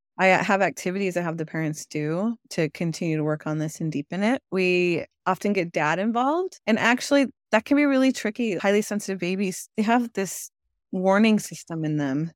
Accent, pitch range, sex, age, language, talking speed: American, 160-210 Hz, female, 20-39, English, 190 wpm